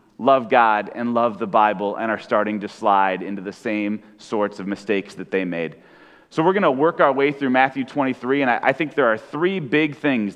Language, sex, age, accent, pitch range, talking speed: English, male, 30-49, American, 105-145 Hz, 220 wpm